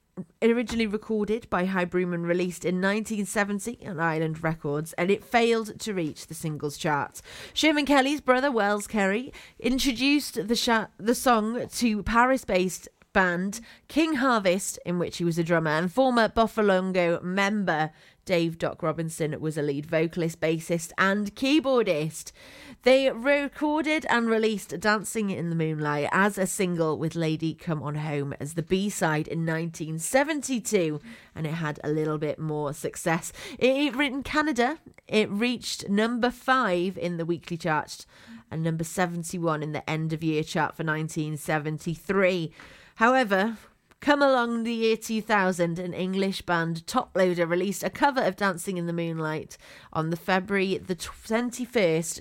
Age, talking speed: 30-49, 150 wpm